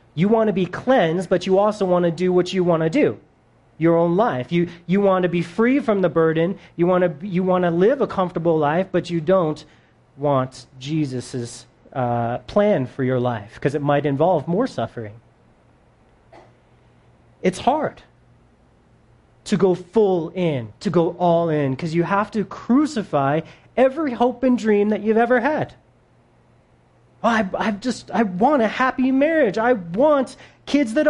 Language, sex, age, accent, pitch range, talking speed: English, male, 30-49, American, 140-220 Hz, 170 wpm